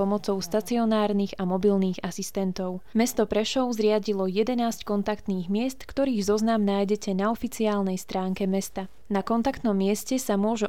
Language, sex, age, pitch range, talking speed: Slovak, female, 20-39, 195-220 Hz, 130 wpm